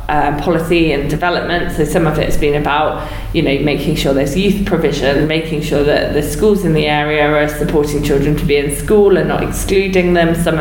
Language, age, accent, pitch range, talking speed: English, 20-39, British, 150-180 Hz, 210 wpm